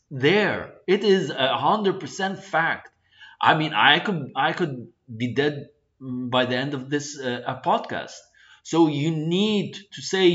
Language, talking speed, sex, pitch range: English, 155 wpm, male, 125-185 Hz